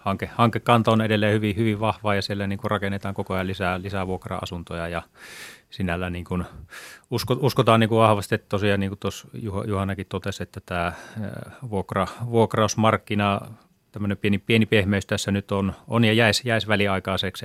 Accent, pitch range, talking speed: native, 95-110 Hz, 160 wpm